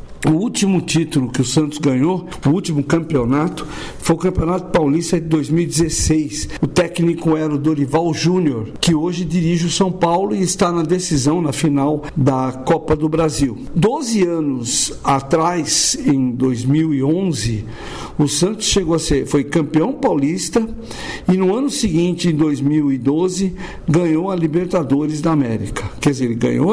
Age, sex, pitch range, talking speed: 60-79, male, 140-180 Hz, 150 wpm